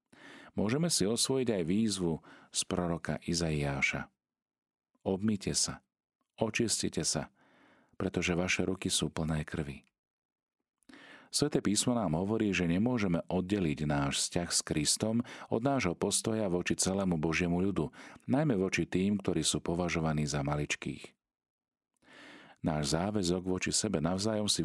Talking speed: 120 wpm